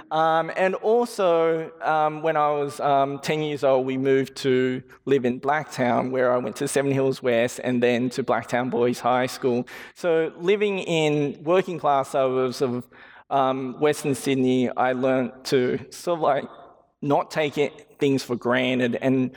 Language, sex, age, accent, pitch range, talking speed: English, male, 20-39, Australian, 130-155 Hz, 165 wpm